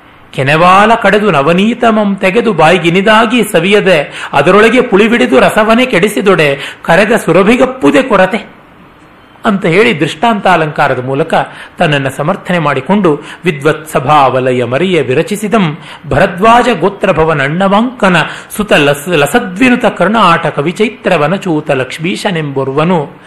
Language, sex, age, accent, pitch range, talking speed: Kannada, male, 40-59, native, 150-210 Hz, 80 wpm